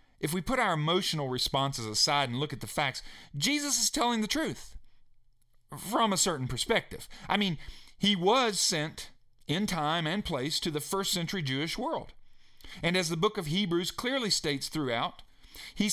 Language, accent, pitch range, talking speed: English, American, 125-185 Hz, 175 wpm